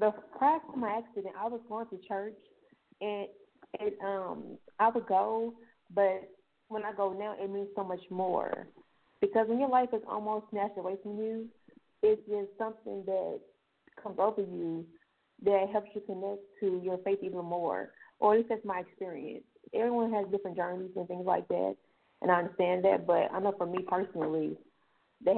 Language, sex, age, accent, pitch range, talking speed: English, female, 20-39, American, 180-210 Hz, 180 wpm